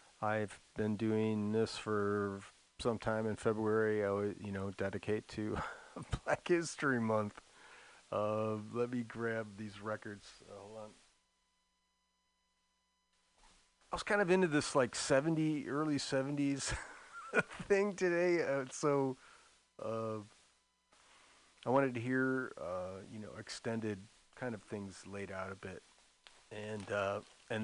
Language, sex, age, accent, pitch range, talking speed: English, male, 30-49, American, 110-145 Hz, 125 wpm